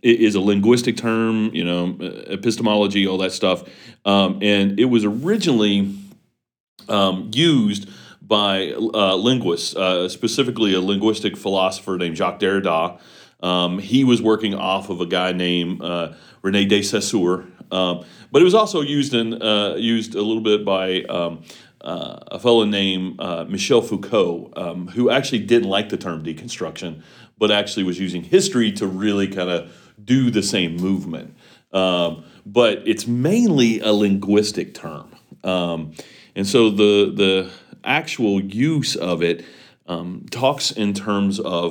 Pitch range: 90-110 Hz